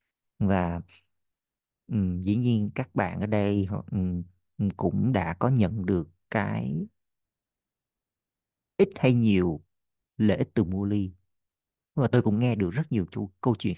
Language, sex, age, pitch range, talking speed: Vietnamese, male, 50-69, 95-125 Hz, 140 wpm